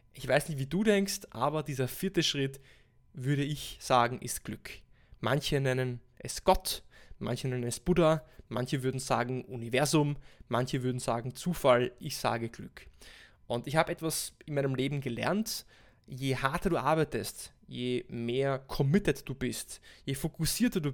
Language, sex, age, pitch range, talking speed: German, male, 20-39, 125-155 Hz, 155 wpm